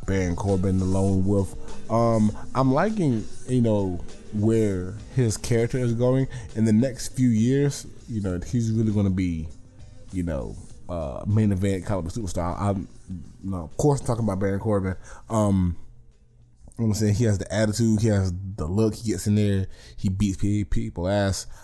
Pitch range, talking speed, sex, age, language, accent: 95-115 Hz, 185 wpm, male, 20-39, English, American